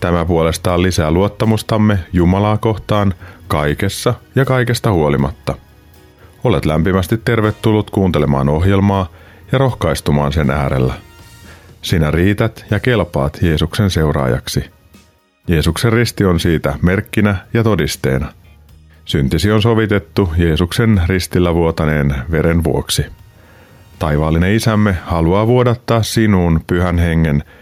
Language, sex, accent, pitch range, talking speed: Finnish, male, native, 80-105 Hz, 100 wpm